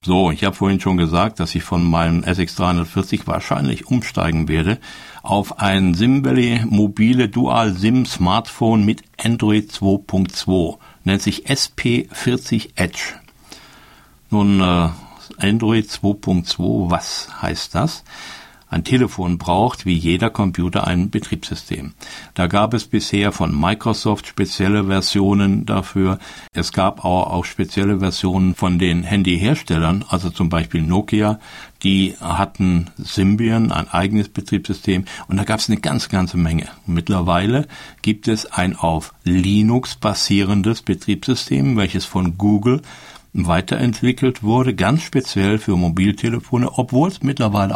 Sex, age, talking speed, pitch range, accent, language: male, 60-79, 125 wpm, 90-110 Hz, German, German